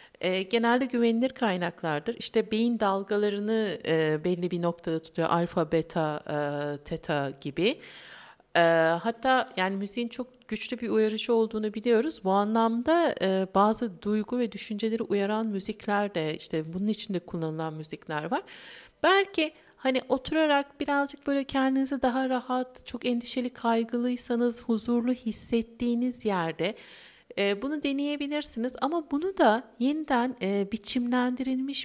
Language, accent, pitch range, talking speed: Turkish, native, 180-250 Hz, 110 wpm